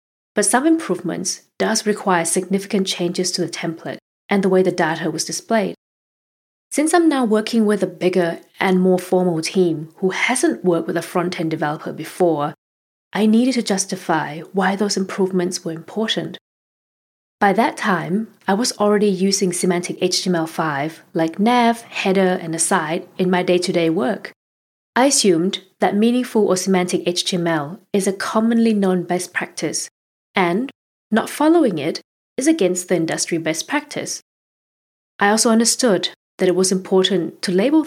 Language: English